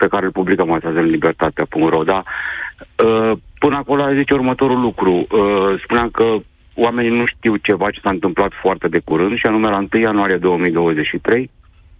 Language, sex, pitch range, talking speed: Romanian, male, 85-115 Hz, 150 wpm